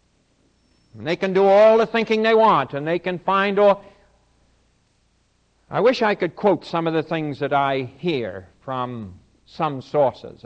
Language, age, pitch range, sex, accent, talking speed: English, 60-79, 140-185 Hz, male, American, 165 wpm